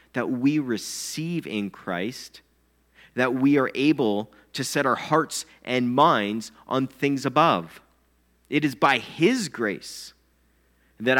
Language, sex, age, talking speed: English, male, 30-49, 130 wpm